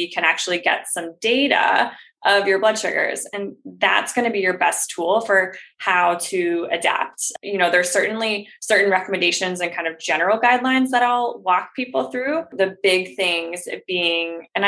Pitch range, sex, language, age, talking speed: 180-235 Hz, female, English, 20-39, 170 wpm